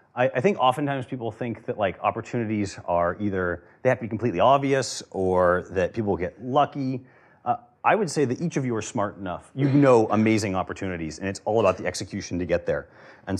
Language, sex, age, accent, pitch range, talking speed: English, male, 30-49, American, 95-135 Hz, 205 wpm